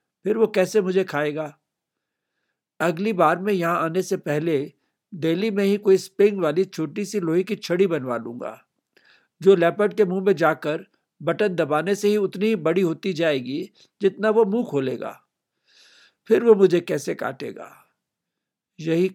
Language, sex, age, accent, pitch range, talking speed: Hindi, male, 60-79, native, 155-195 Hz, 155 wpm